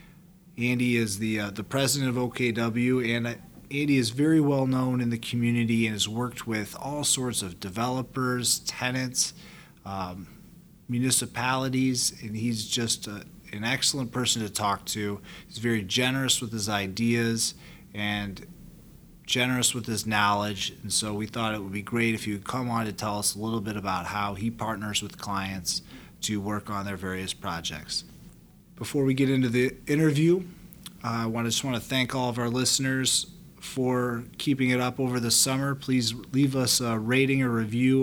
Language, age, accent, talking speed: English, 30-49, American, 175 wpm